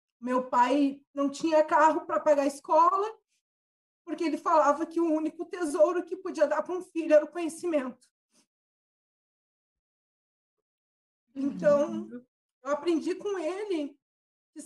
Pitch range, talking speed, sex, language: 260-325 Hz, 125 wpm, female, Portuguese